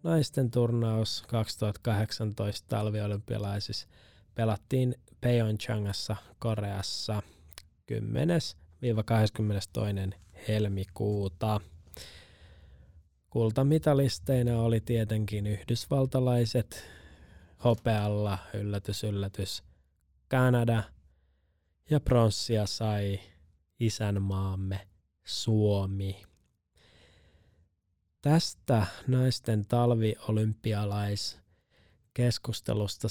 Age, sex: 20-39, male